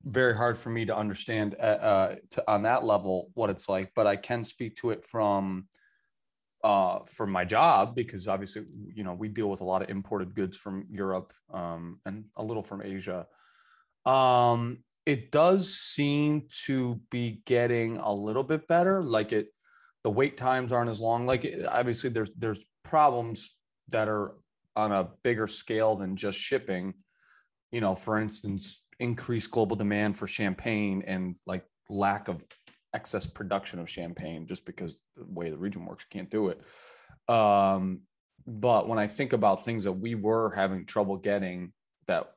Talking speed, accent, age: 170 wpm, American, 30-49